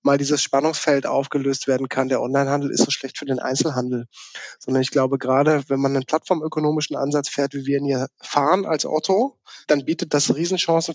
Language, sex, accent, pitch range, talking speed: German, male, German, 140-170 Hz, 190 wpm